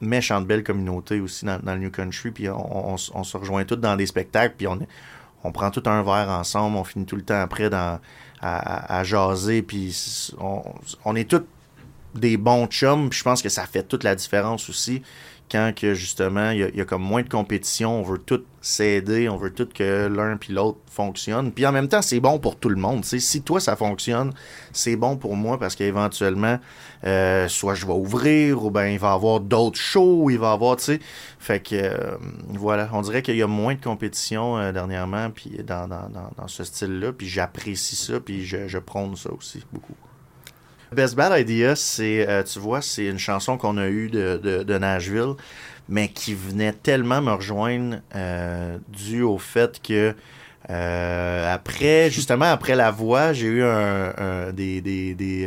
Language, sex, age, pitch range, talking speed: French, male, 30-49, 95-120 Hz, 210 wpm